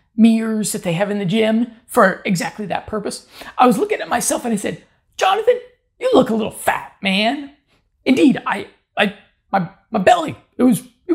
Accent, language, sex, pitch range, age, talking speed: American, English, male, 185-230 Hz, 30-49, 185 wpm